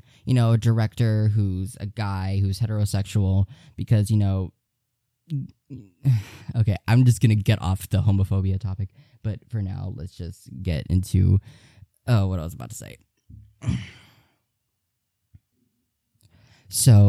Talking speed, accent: 130 wpm, American